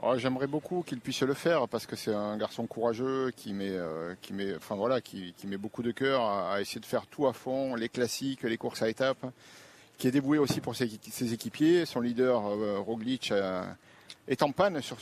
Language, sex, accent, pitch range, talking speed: French, male, French, 115-140 Hz, 210 wpm